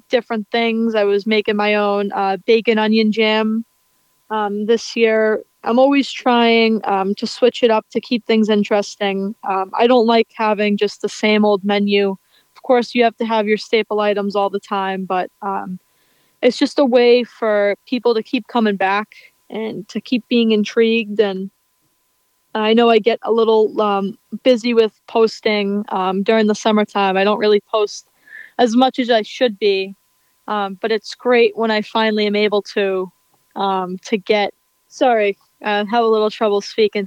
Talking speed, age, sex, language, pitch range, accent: 180 wpm, 20-39, female, English, 205-235 Hz, American